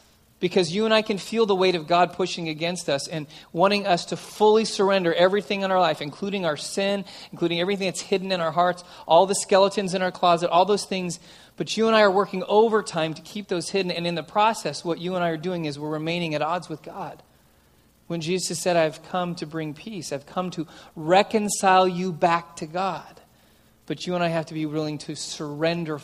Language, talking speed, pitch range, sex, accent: English, 220 wpm, 155-185 Hz, male, American